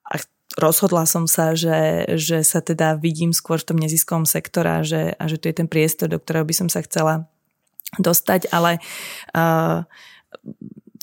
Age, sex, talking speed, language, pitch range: 20-39, female, 160 wpm, Slovak, 160-175 Hz